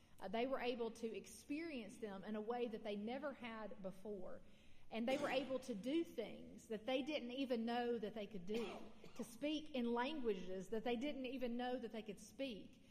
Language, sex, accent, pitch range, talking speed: English, female, American, 215-260 Hz, 205 wpm